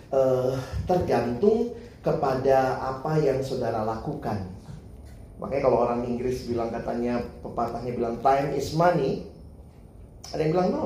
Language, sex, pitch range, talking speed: Indonesian, male, 115-185 Hz, 120 wpm